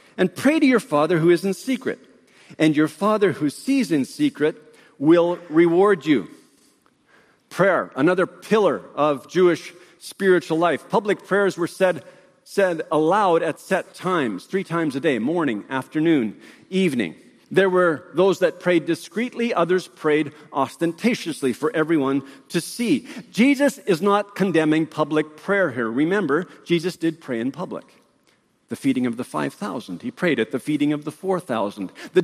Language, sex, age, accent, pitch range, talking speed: English, male, 50-69, American, 155-215 Hz, 155 wpm